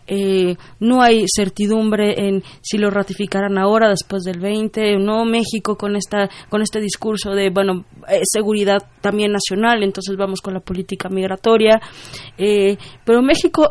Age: 20-39